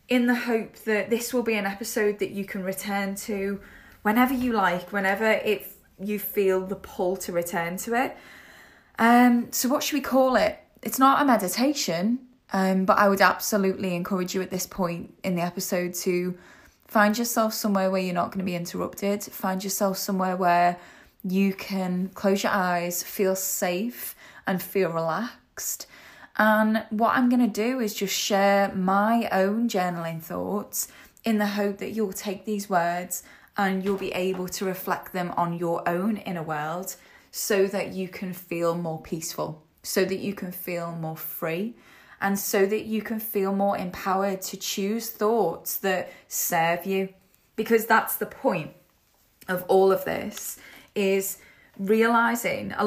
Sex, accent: female, British